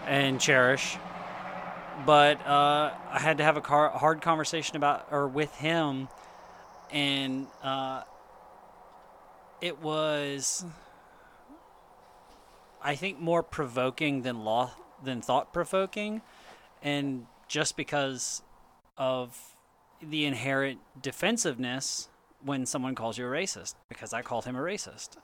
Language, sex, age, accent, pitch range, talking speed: English, male, 30-49, American, 125-150 Hz, 115 wpm